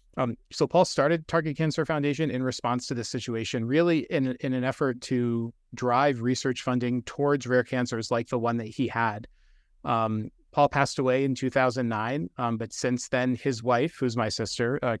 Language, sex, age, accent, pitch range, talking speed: English, male, 30-49, American, 115-135 Hz, 185 wpm